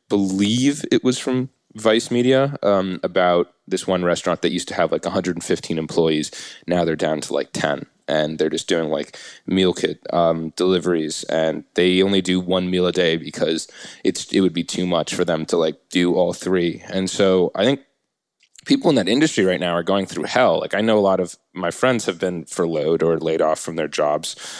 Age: 20-39